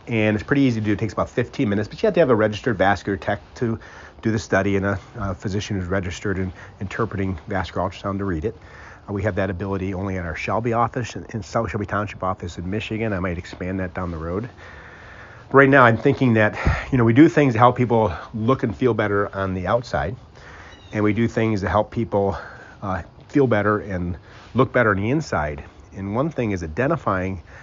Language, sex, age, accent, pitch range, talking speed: English, male, 40-59, American, 95-120 Hz, 225 wpm